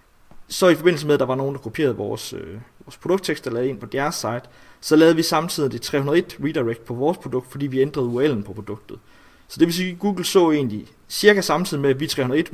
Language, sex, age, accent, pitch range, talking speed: Danish, male, 30-49, native, 120-155 Hz, 240 wpm